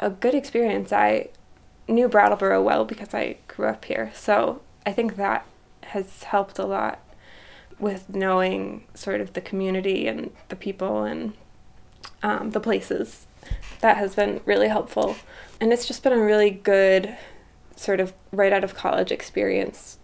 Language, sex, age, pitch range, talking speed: English, female, 20-39, 185-215 Hz, 155 wpm